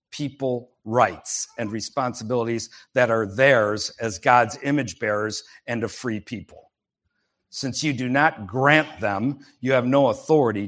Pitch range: 115-145 Hz